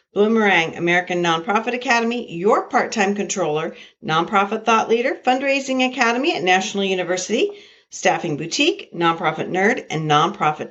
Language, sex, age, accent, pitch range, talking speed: English, female, 50-69, American, 175-235 Hz, 120 wpm